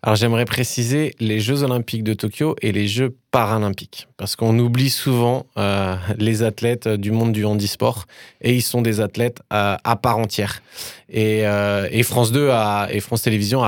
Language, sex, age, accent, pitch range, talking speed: French, male, 20-39, French, 110-130 Hz, 180 wpm